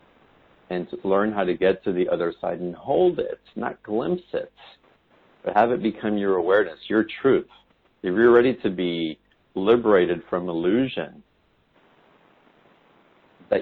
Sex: male